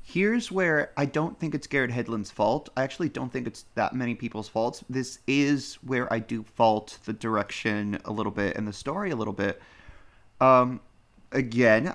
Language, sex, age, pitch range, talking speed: English, male, 30-49, 110-150 Hz, 185 wpm